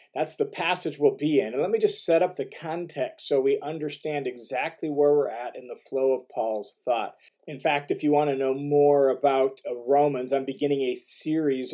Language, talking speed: English, 210 wpm